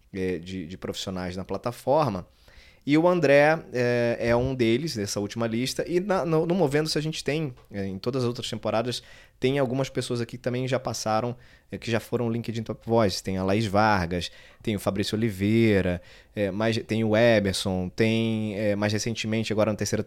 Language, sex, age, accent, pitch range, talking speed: Portuguese, male, 20-39, Brazilian, 105-130 Hz, 175 wpm